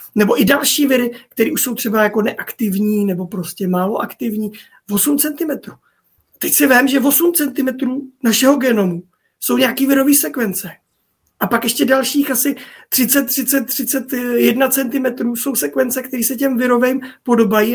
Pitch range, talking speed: 200-255 Hz, 150 wpm